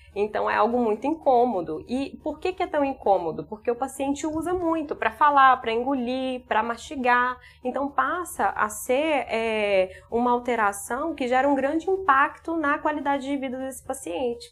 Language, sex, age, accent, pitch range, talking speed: Portuguese, female, 20-39, Brazilian, 200-265 Hz, 165 wpm